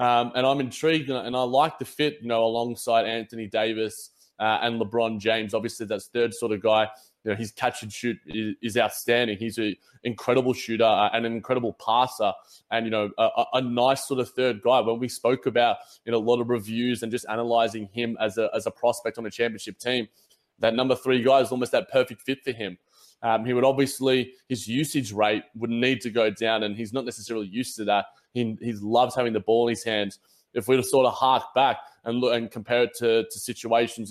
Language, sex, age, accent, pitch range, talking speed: English, male, 20-39, Australian, 115-130 Hz, 225 wpm